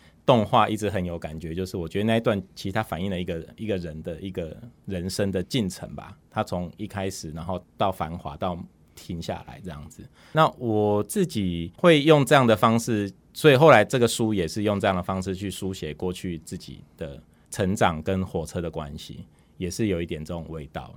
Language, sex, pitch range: Chinese, male, 85-110 Hz